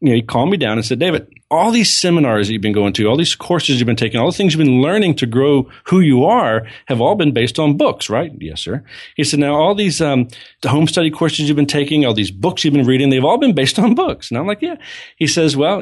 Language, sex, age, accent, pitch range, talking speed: English, male, 40-59, American, 100-145 Hz, 285 wpm